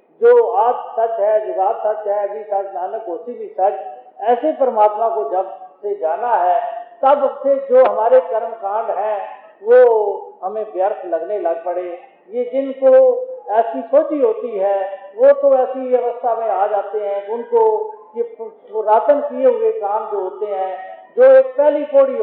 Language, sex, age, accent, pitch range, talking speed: Hindi, male, 50-69, native, 210-315 Hz, 165 wpm